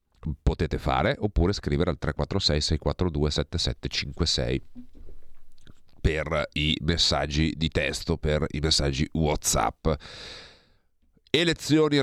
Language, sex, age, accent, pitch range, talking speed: Italian, male, 40-59, native, 70-90 Hz, 90 wpm